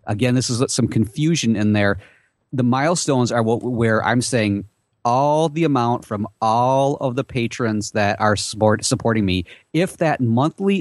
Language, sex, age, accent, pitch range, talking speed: English, male, 30-49, American, 110-140 Hz, 155 wpm